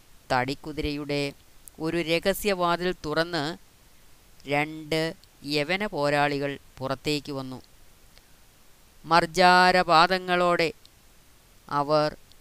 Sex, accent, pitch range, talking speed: female, native, 140-165 Hz, 55 wpm